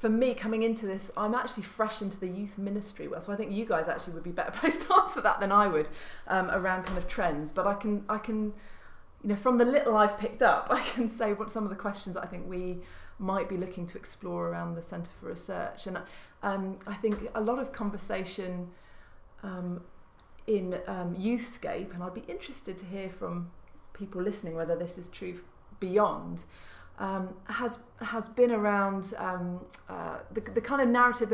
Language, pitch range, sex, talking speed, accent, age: English, 180-215 Hz, female, 200 wpm, British, 30-49